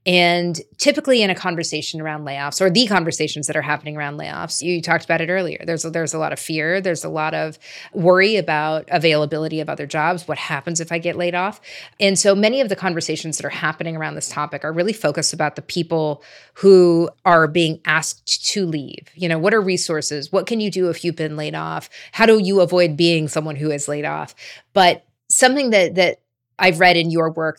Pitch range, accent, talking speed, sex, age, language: 155-195 Hz, American, 220 wpm, female, 30-49, English